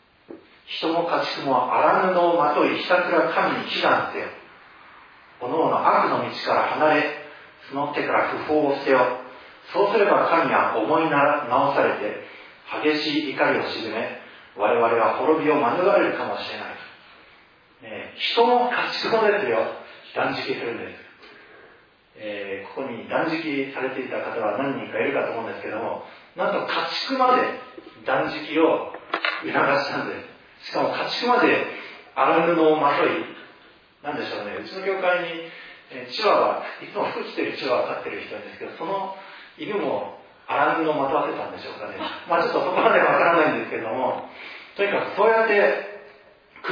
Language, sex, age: Japanese, male, 40-59